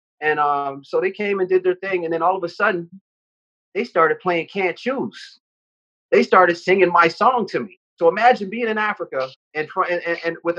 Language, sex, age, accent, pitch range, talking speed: English, male, 30-49, American, 150-185 Hz, 205 wpm